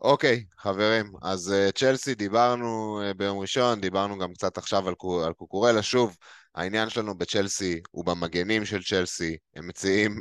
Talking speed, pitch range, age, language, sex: 140 wpm, 85-105 Hz, 20-39, Hebrew, male